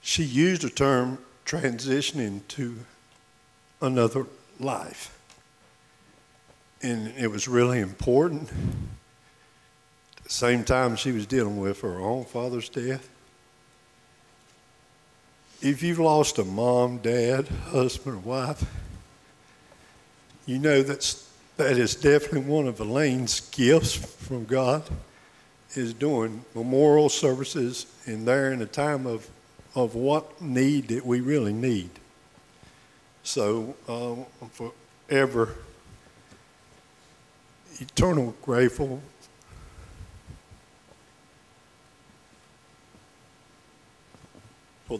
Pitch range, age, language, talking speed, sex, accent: 115-135 Hz, 60-79, English, 95 wpm, male, American